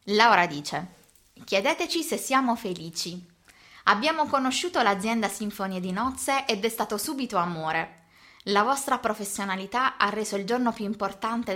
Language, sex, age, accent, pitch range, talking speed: Italian, female, 20-39, native, 180-225 Hz, 135 wpm